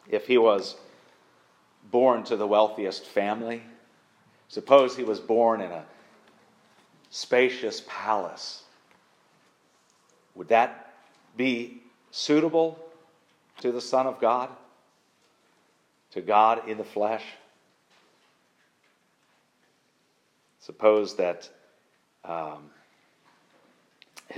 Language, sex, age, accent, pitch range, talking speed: English, male, 40-59, American, 105-140 Hz, 80 wpm